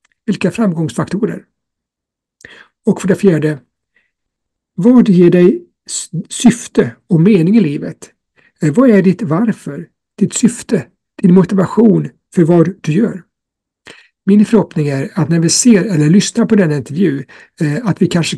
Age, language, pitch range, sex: 60-79, Swedish, 160-205 Hz, male